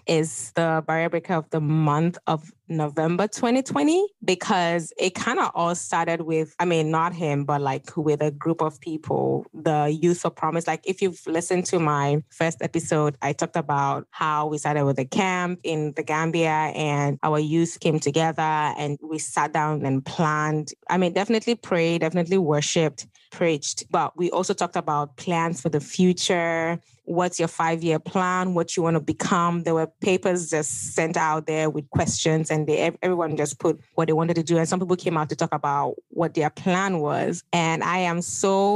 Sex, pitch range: female, 155-180 Hz